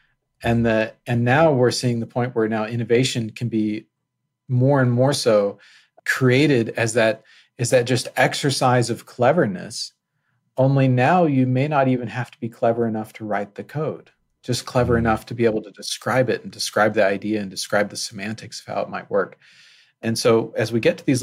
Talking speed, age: 200 wpm, 40-59